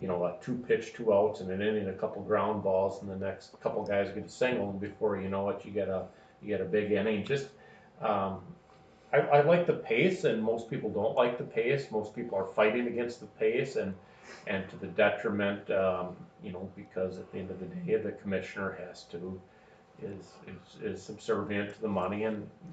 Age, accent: 40-59, American